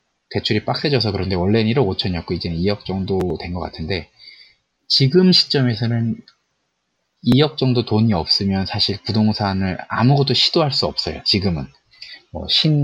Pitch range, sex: 90-125 Hz, male